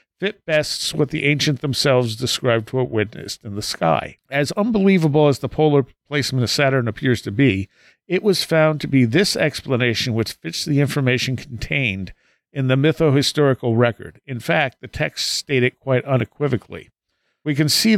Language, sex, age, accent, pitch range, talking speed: English, male, 50-69, American, 120-150 Hz, 165 wpm